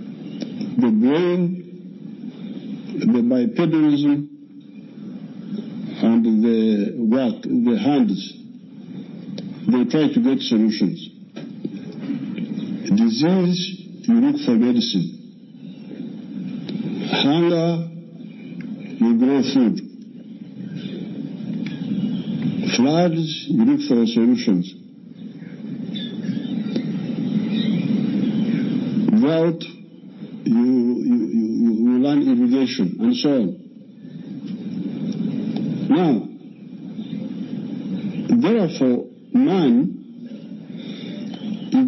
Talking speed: 55 wpm